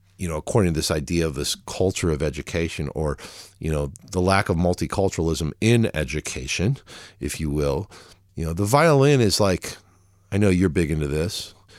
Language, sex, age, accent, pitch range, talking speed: English, male, 50-69, American, 85-110 Hz, 180 wpm